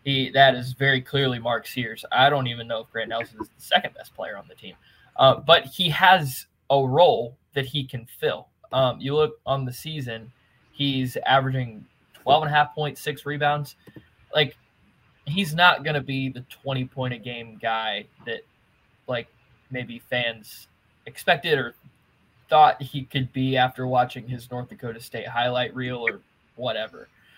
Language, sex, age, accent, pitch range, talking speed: English, male, 20-39, American, 125-145 Hz, 175 wpm